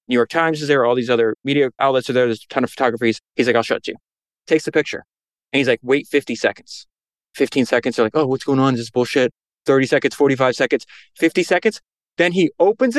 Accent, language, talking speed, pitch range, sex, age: American, English, 235 wpm, 135-220 Hz, male, 20-39